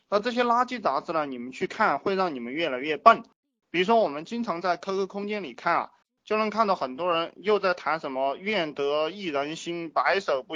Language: Chinese